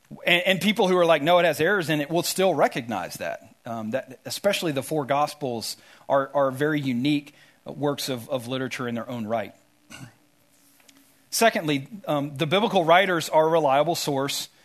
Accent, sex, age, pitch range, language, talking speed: American, male, 40-59, 140-175 Hz, English, 170 wpm